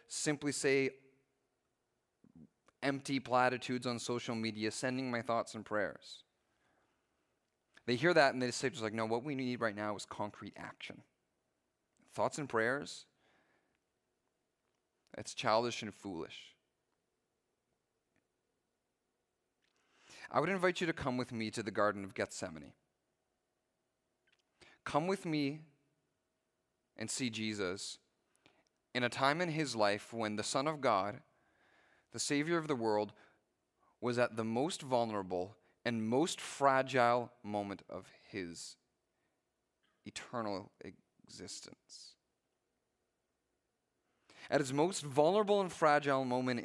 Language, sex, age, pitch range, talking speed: English, male, 30-49, 110-140 Hz, 115 wpm